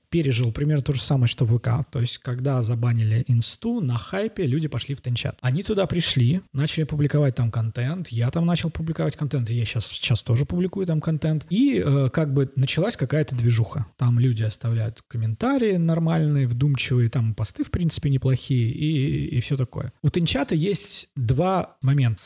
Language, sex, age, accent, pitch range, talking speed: Russian, male, 20-39, native, 120-155 Hz, 180 wpm